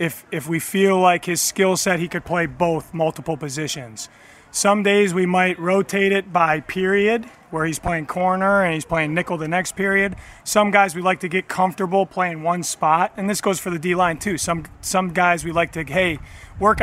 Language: English